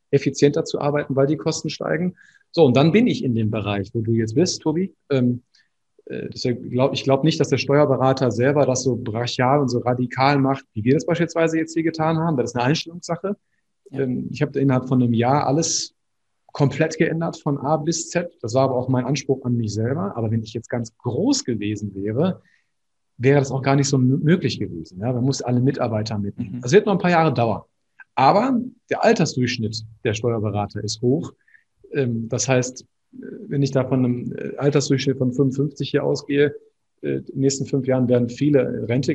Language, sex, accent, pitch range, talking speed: German, male, German, 115-145 Hz, 190 wpm